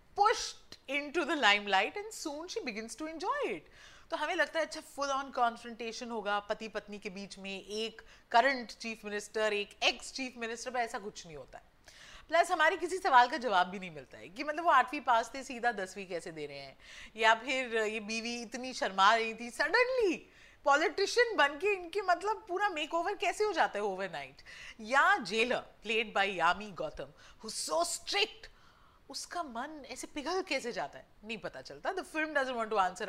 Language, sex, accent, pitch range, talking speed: English, female, Indian, 220-330 Hz, 90 wpm